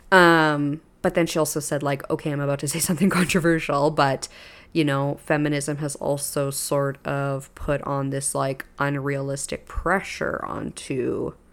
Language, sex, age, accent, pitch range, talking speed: English, female, 20-39, American, 145-175 Hz, 150 wpm